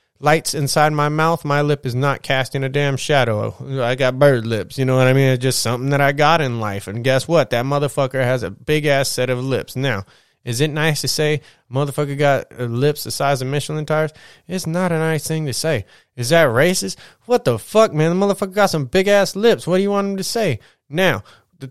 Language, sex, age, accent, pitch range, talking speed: English, male, 20-39, American, 130-160 Hz, 235 wpm